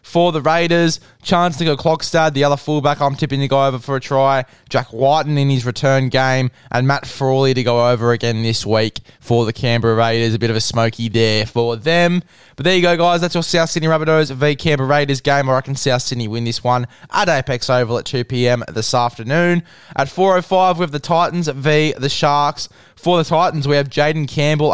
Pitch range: 125-155 Hz